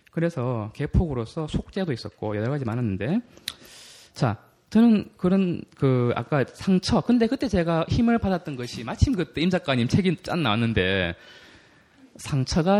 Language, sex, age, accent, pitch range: Korean, male, 20-39, native, 110-180 Hz